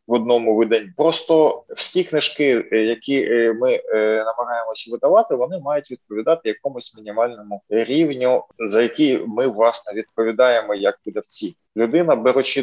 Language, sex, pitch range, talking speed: Ukrainian, male, 115-155 Hz, 125 wpm